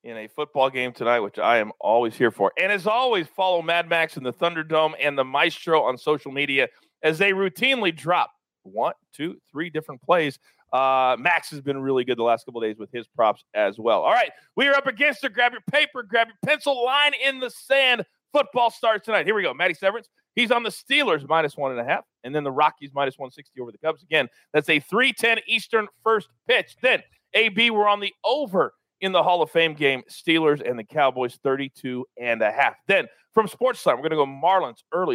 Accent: American